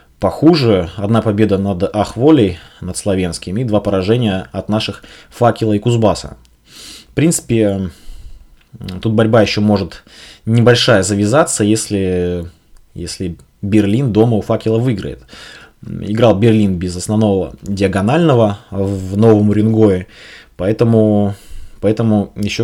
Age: 20-39